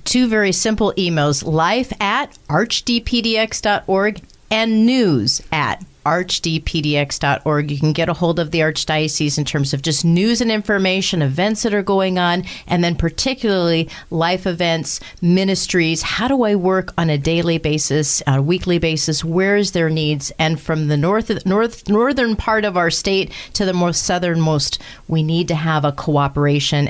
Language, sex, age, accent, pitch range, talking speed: English, female, 40-59, American, 160-205 Hz, 165 wpm